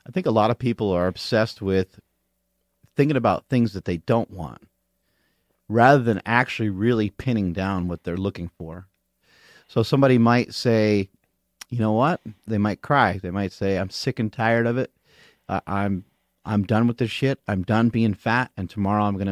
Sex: male